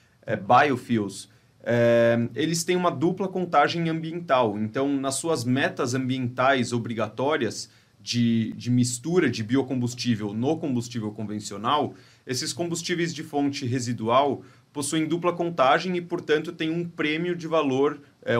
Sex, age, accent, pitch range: male, 30-49, Brazilian, 125-165 Hz